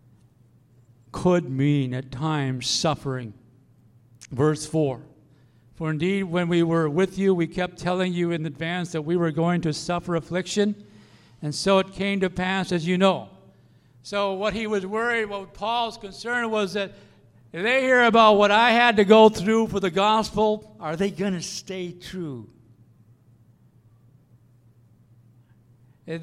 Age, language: 60-79, English